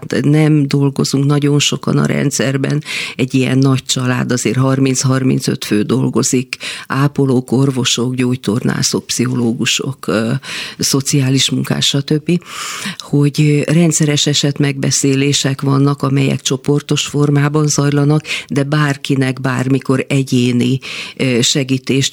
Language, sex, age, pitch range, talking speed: Hungarian, female, 50-69, 125-145 Hz, 100 wpm